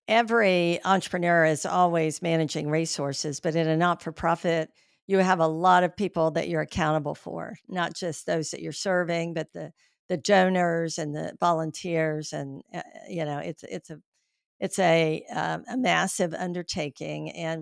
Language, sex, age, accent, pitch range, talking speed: English, female, 50-69, American, 160-195 Hz, 155 wpm